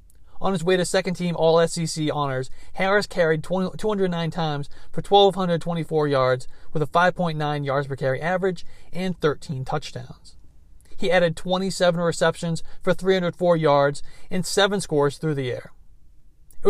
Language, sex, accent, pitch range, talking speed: English, male, American, 130-180 Hz, 135 wpm